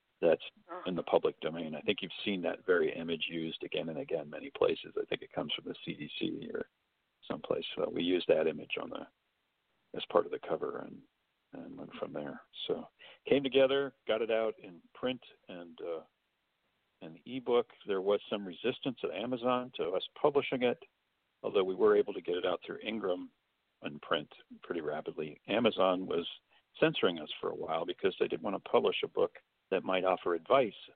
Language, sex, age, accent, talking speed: English, male, 50-69, American, 195 wpm